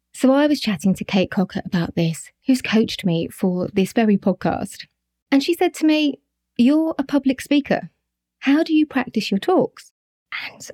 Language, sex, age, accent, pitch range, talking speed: English, female, 30-49, British, 185-245 Hz, 180 wpm